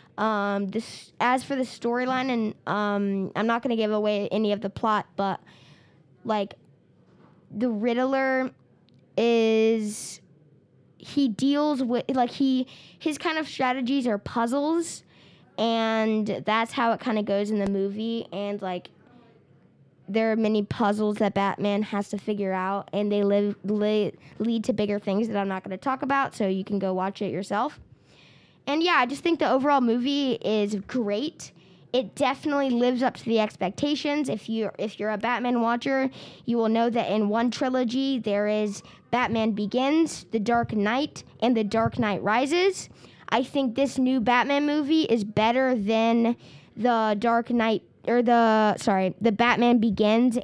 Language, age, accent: English, 10-29, American